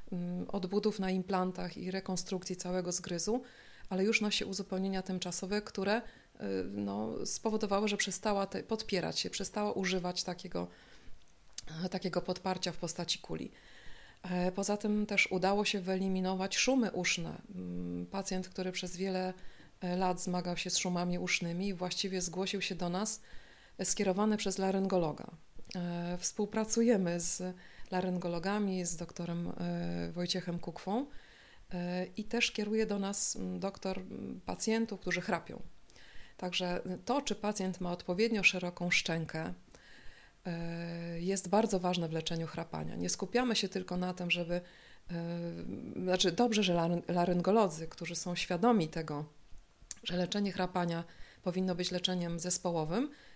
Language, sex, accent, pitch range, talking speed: Polish, female, native, 175-200 Hz, 120 wpm